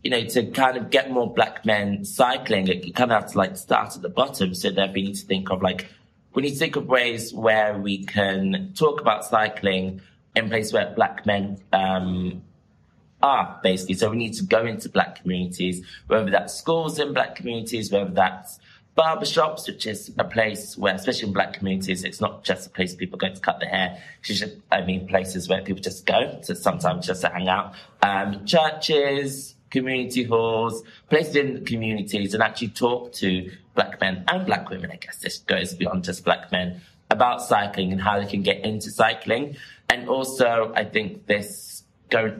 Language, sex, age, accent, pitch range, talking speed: English, male, 20-39, British, 95-120 Hz, 200 wpm